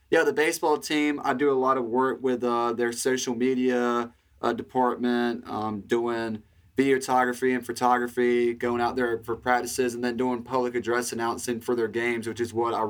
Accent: American